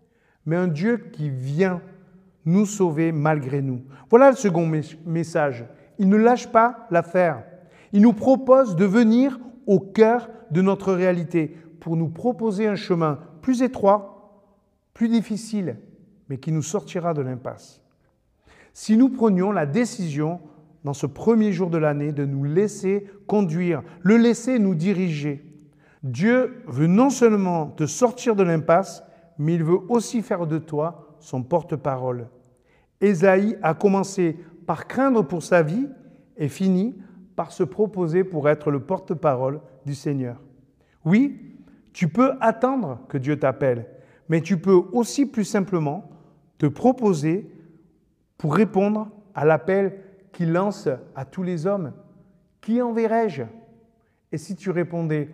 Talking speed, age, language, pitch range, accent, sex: 140 wpm, 50-69, French, 155-210 Hz, French, male